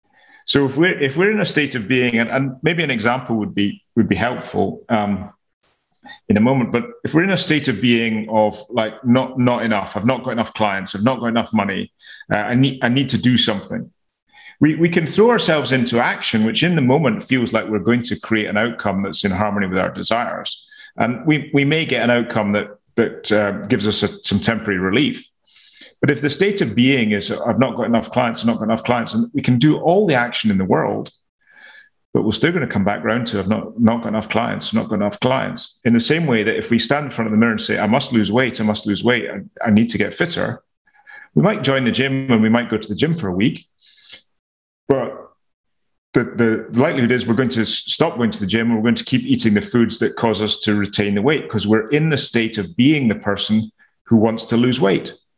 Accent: British